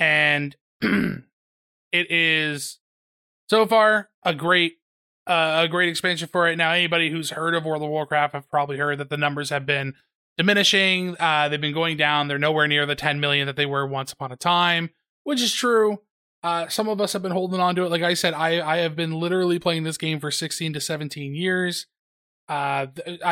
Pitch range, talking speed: 145-180 Hz, 205 wpm